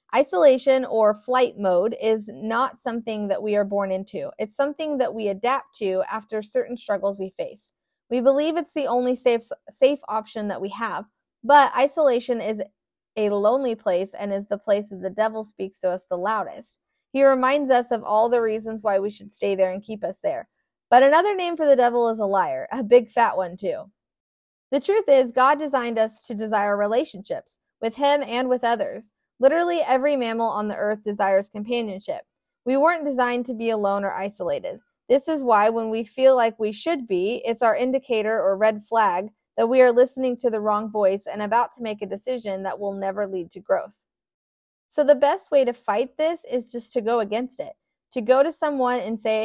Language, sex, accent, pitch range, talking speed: English, female, American, 210-265 Hz, 205 wpm